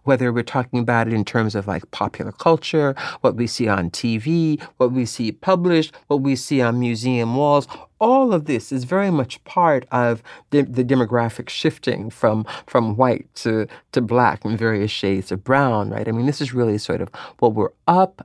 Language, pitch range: English, 115-145 Hz